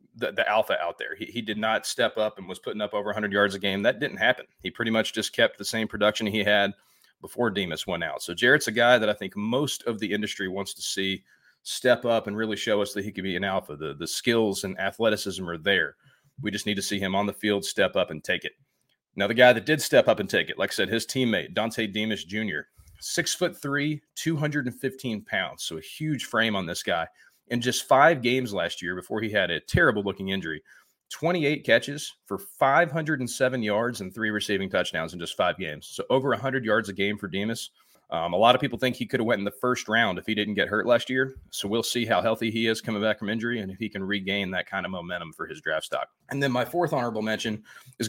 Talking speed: 250 wpm